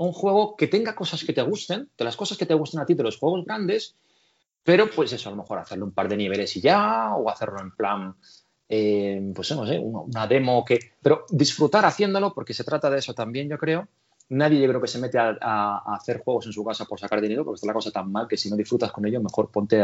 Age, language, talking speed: 30-49, Spanish, 255 wpm